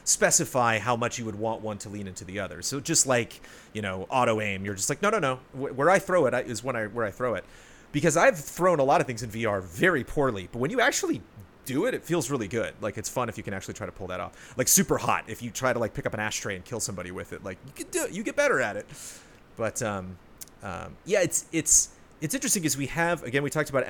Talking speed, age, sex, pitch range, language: 280 wpm, 30-49, male, 100-140 Hz, English